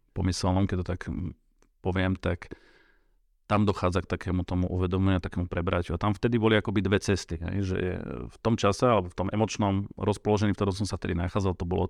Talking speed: 200 wpm